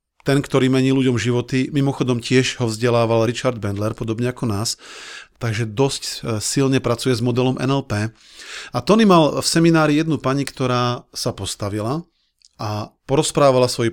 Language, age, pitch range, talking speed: Slovak, 40-59, 115-135 Hz, 145 wpm